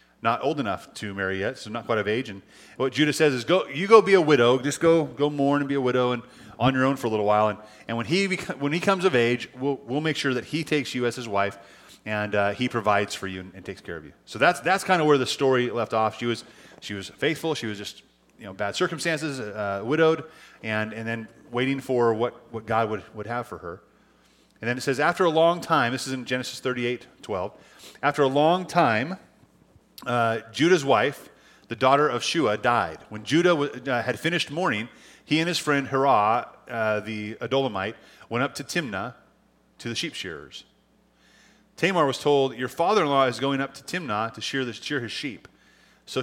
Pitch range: 110-145 Hz